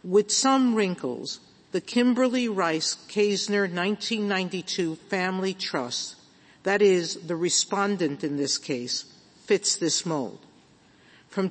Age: 50-69